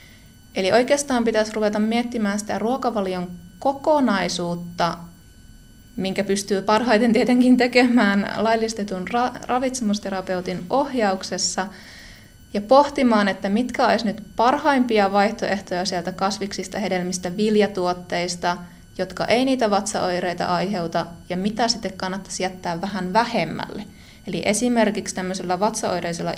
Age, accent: 20-39, native